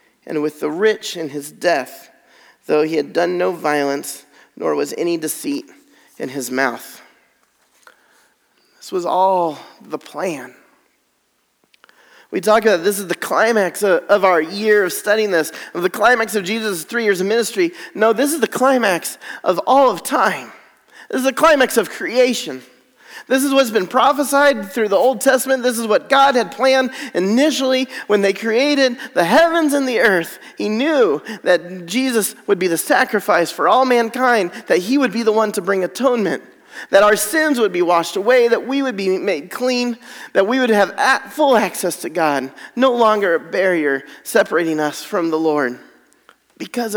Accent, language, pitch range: American, English, 185-265 Hz